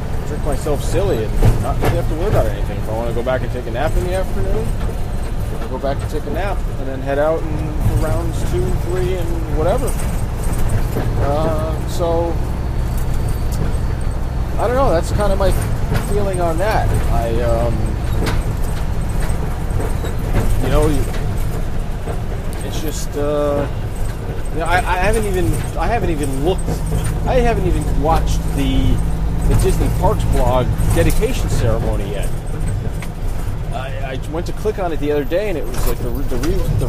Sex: male